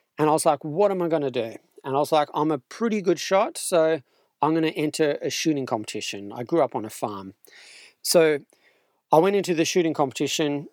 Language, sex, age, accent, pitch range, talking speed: English, male, 40-59, Australian, 140-175 Hz, 225 wpm